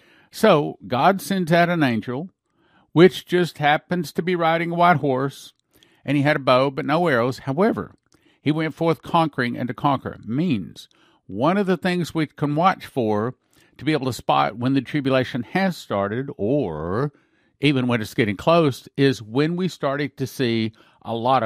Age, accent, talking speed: 50-69, American, 180 wpm